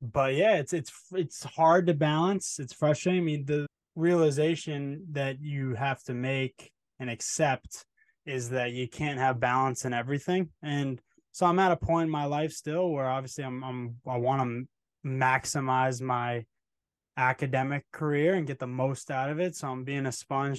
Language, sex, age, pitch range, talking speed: English, male, 20-39, 125-145 Hz, 180 wpm